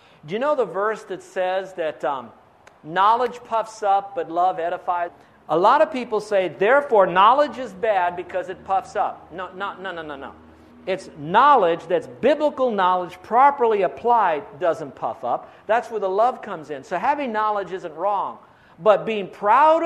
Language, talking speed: English, 175 wpm